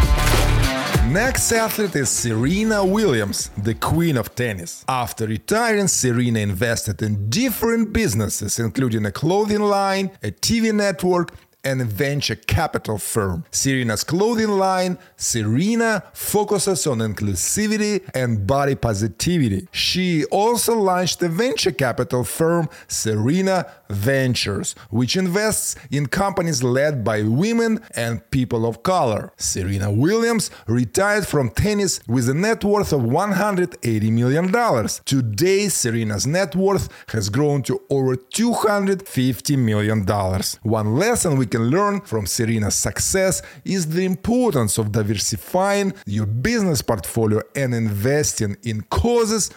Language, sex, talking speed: English, male, 120 wpm